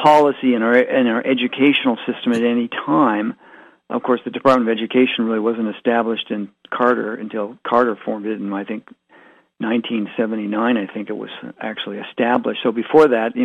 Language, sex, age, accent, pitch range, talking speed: English, male, 50-69, American, 115-145 Hz, 175 wpm